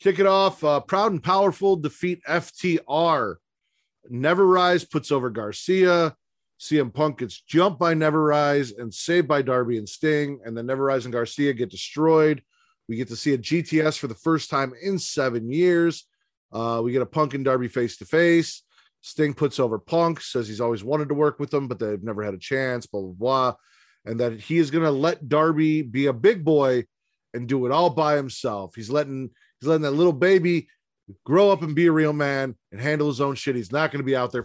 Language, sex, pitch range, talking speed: English, male, 120-155 Hz, 215 wpm